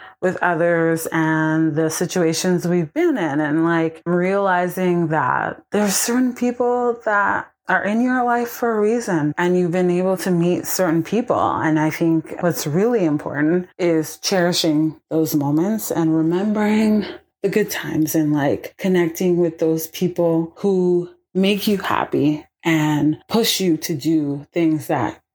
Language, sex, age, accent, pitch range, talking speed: English, female, 30-49, American, 160-195 Hz, 150 wpm